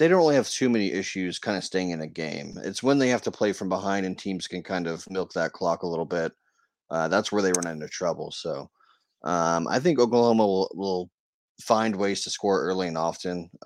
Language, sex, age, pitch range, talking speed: English, male, 30-49, 85-100 Hz, 235 wpm